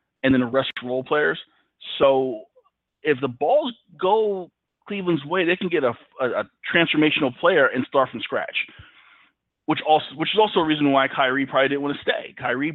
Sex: male